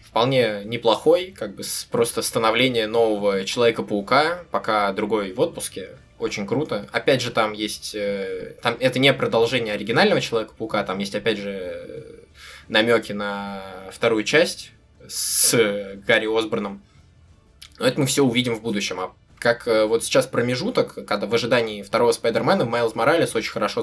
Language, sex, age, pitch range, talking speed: Russian, male, 20-39, 100-115 Hz, 140 wpm